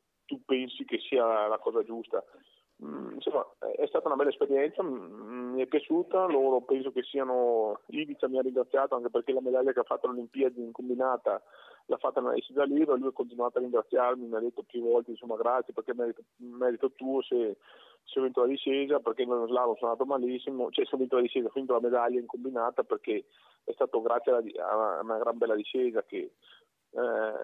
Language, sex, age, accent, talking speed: Italian, male, 30-49, native, 200 wpm